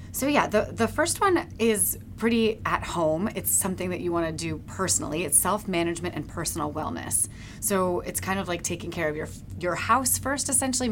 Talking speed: 190 wpm